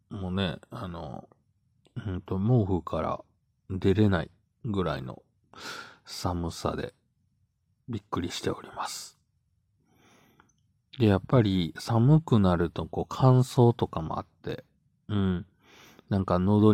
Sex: male